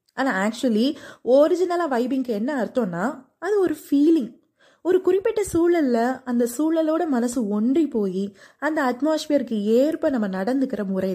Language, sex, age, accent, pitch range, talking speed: Tamil, female, 20-39, native, 230-310 Hz, 125 wpm